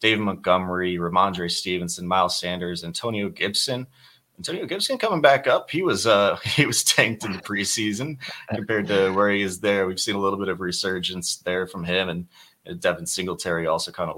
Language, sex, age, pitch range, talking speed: English, male, 30-49, 90-120 Hz, 185 wpm